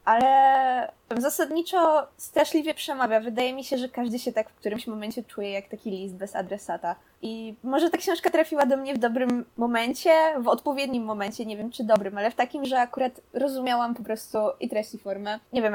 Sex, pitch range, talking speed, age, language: female, 225-285 Hz, 195 wpm, 20-39, Polish